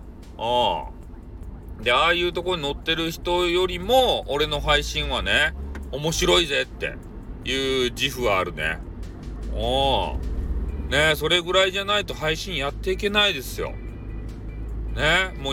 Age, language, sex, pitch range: 40-59, Japanese, male, 110-170 Hz